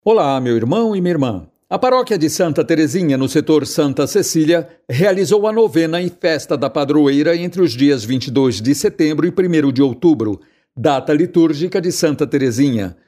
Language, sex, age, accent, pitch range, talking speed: Portuguese, male, 60-79, Brazilian, 150-185 Hz, 170 wpm